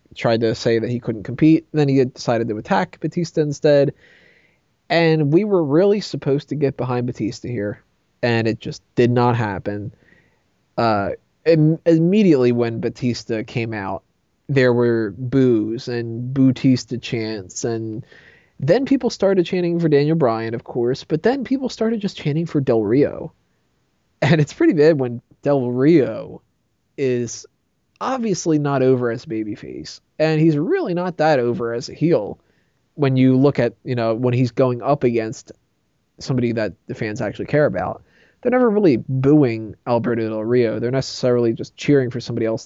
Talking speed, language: 165 wpm, English